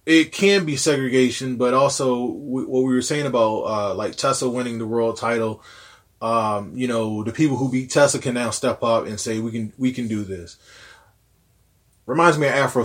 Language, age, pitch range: English, 20-39, 115-170 Hz